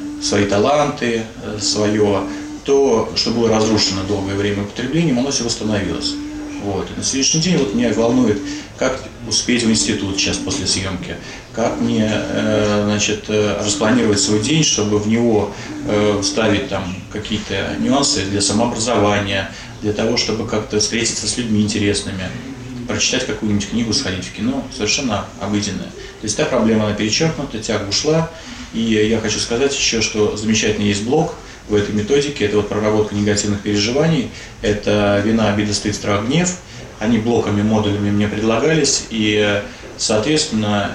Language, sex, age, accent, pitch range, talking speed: Russian, male, 30-49, native, 100-115 Hz, 140 wpm